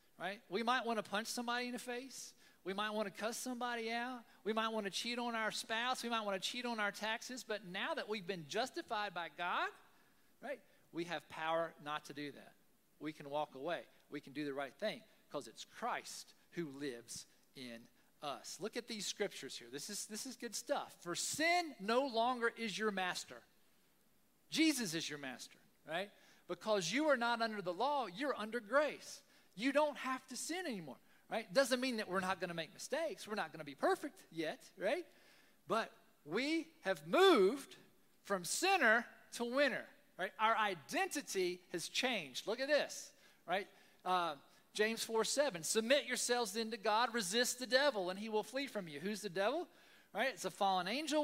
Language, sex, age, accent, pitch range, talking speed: English, male, 50-69, American, 190-260 Hz, 195 wpm